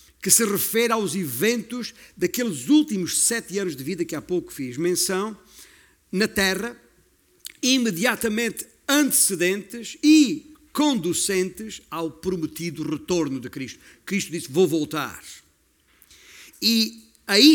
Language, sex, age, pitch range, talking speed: Portuguese, male, 50-69, 165-230 Hz, 115 wpm